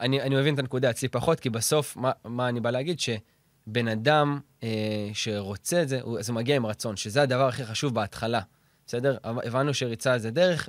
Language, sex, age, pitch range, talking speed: Hebrew, male, 20-39, 120-150 Hz, 210 wpm